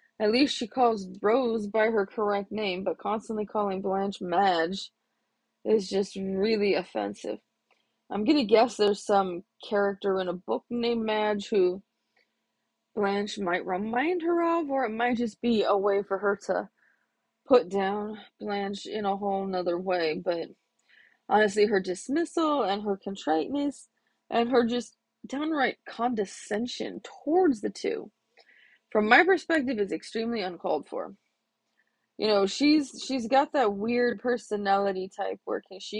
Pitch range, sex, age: 195-250 Hz, female, 20-39